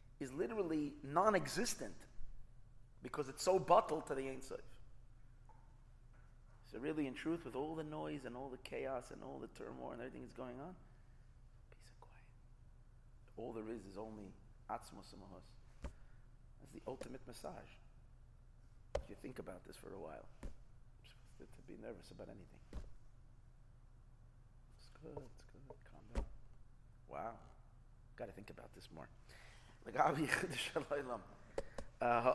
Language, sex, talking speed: English, male, 135 wpm